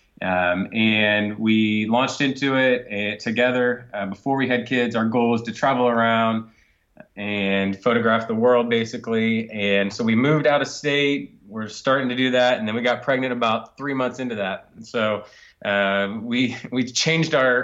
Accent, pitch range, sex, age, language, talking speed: American, 105-125 Hz, male, 20-39, English, 180 wpm